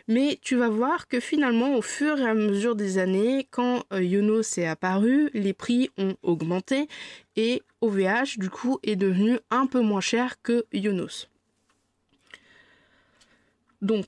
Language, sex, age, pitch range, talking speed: French, female, 20-39, 195-235 Hz, 145 wpm